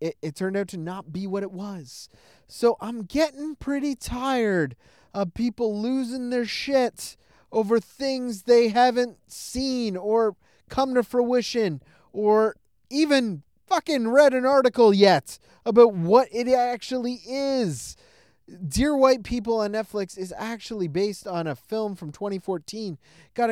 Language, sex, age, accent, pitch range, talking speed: English, male, 20-39, American, 190-275 Hz, 140 wpm